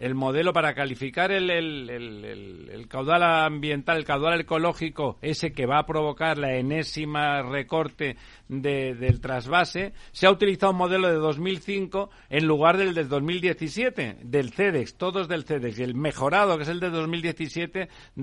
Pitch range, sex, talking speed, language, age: 140-185 Hz, male, 165 wpm, Spanish, 60-79